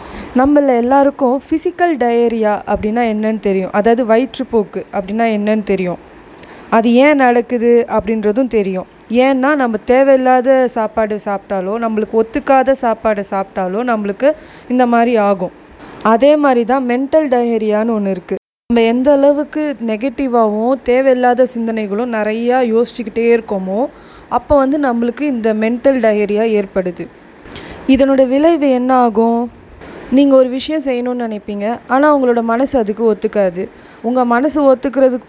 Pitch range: 215-265 Hz